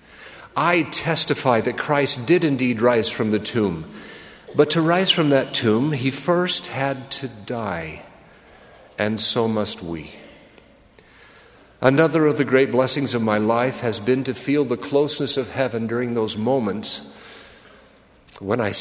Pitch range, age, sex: 130-205 Hz, 50-69, male